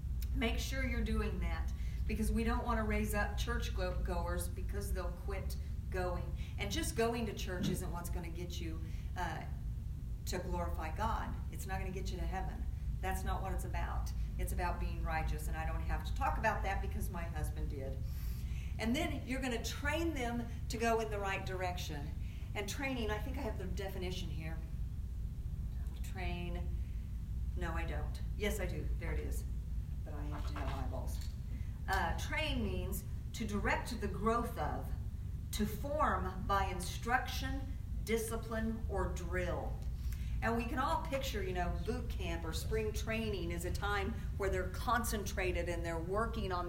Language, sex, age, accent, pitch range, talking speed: English, female, 50-69, American, 75-95 Hz, 175 wpm